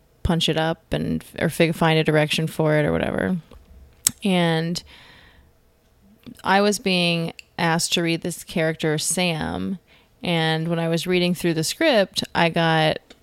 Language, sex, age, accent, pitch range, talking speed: English, female, 20-39, American, 155-180 Hz, 145 wpm